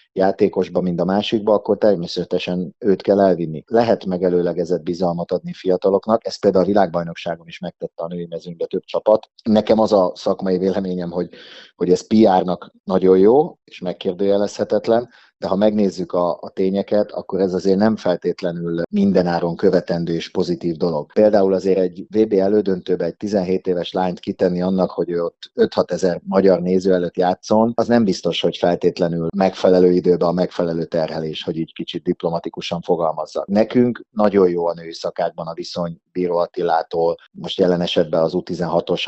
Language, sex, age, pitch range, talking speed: Hungarian, male, 30-49, 85-100 Hz, 160 wpm